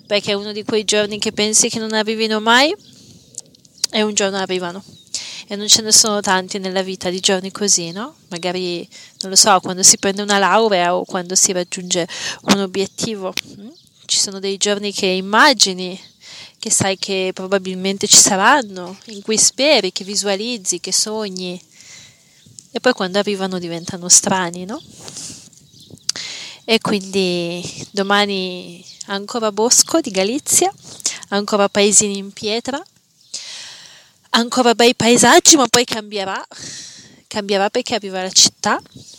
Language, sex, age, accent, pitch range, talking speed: Italian, female, 30-49, native, 185-220 Hz, 140 wpm